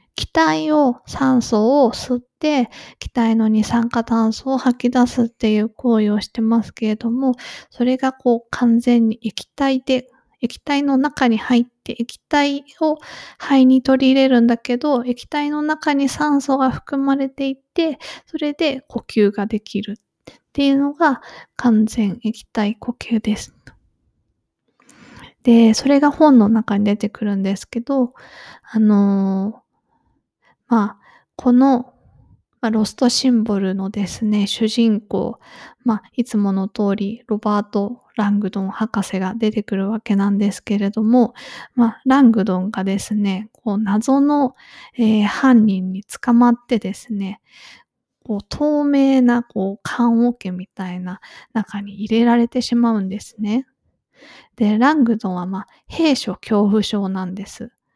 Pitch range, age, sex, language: 210-265 Hz, 20-39, female, English